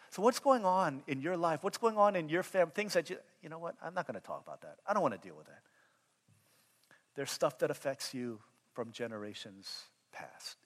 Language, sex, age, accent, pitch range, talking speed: English, male, 50-69, American, 125-175 Hz, 230 wpm